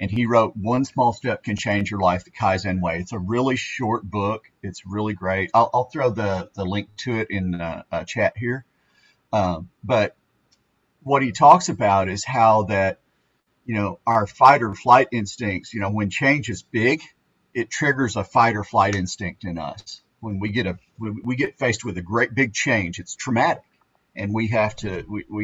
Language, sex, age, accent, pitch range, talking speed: English, male, 40-59, American, 100-120 Hz, 205 wpm